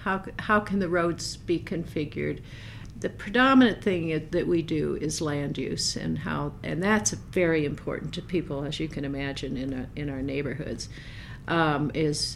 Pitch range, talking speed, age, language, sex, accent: 140-175 Hz, 180 wpm, 60-79, English, female, American